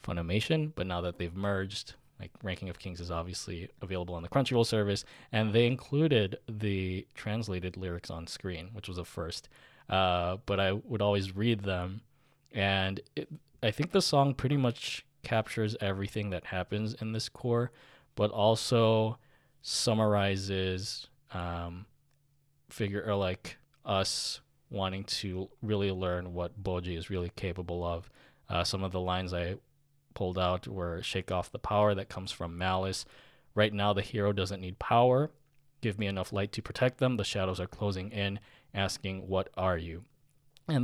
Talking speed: 160 wpm